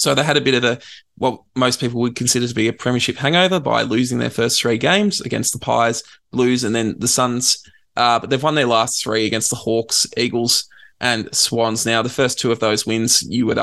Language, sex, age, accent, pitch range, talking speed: English, male, 20-39, Australian, 110-135 Hz, 235 wpm